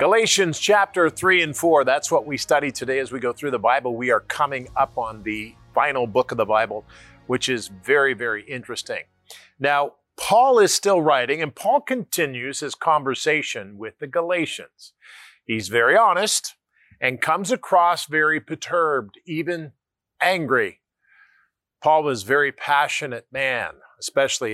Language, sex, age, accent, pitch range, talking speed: English, male, 50-69, American, 125-175 Hz, 150 wpm